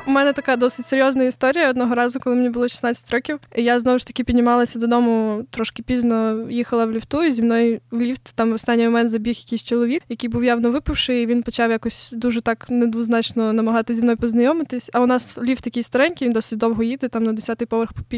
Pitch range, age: 230-250 Hz, 20-39